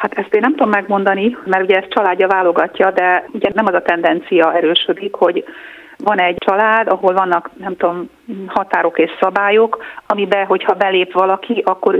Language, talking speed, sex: Hungarian, 170 wpm, female